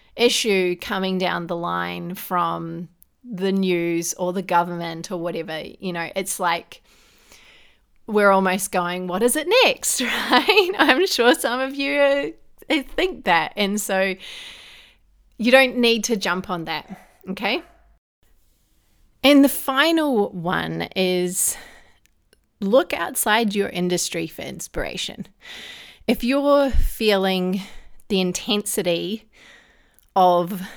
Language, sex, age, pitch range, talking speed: English, female, 30-49, 175-230 Hz, 115 wpm